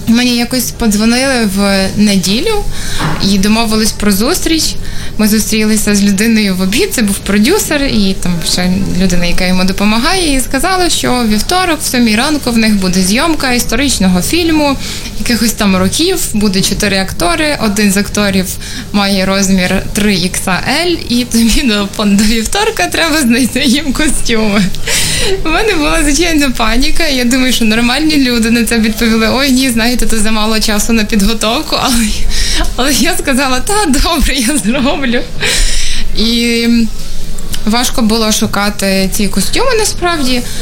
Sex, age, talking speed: female, 20-39, 140 wpm